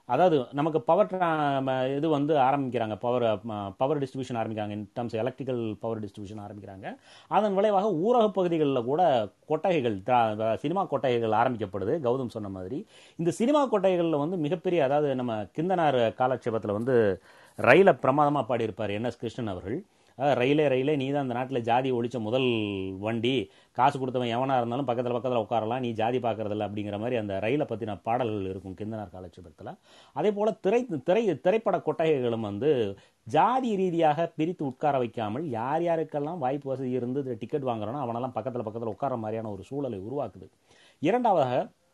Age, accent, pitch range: 30-49, native, 110-150 Hz